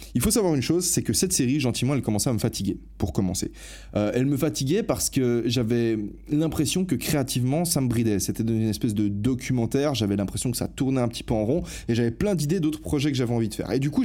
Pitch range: 110-150 Hz